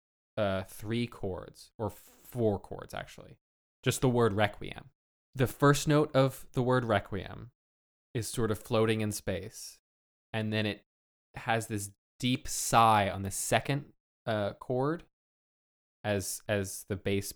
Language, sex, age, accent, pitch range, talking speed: English, male, 20-39, American, 95-120 Hz, 140 wpm